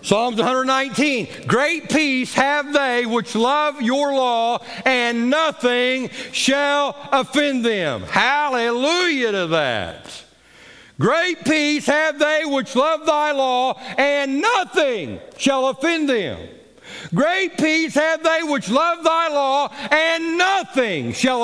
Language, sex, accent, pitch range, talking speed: English, male, American, 230-290 Hz, 120 wpm